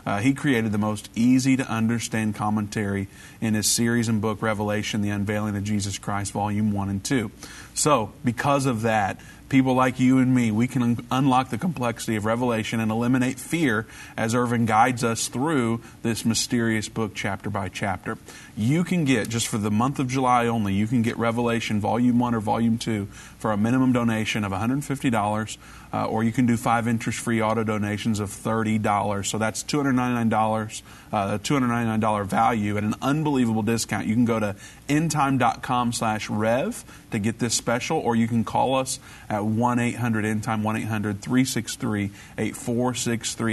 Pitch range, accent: 110-125 Hz, American